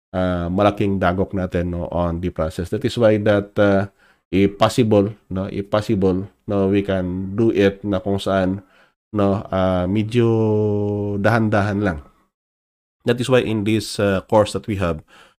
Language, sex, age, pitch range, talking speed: Filipino, male, 20-39, 90-105 Hz, 160 wpm